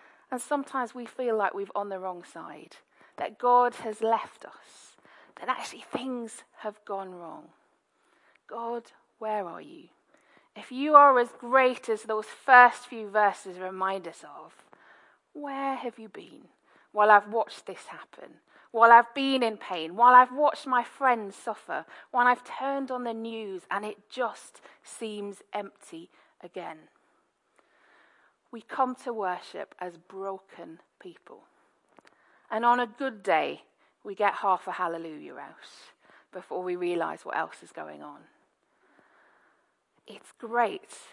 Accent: British